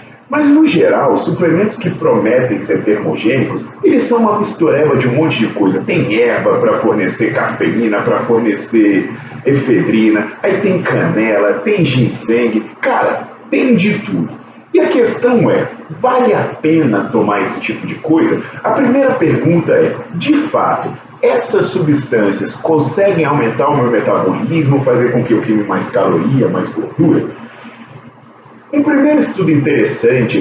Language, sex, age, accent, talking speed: Portuguese, male, 40-59, Brazilian, 145 wpm